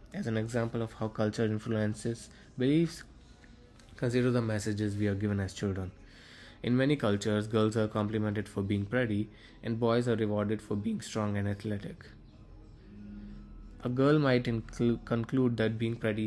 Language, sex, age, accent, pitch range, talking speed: English, male, 20-39, Indian, 105-120 Hz, 150 wpm